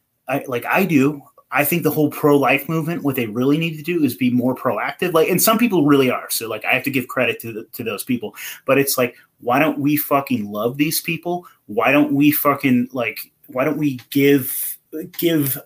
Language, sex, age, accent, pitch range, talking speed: English, male, 30-49, American, 125-155 Hz, 215 wpm